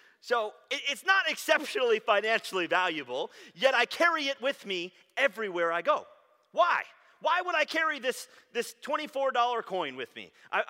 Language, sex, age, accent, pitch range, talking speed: English, male, 30-49, American, 180-275 Hz, 150 wpm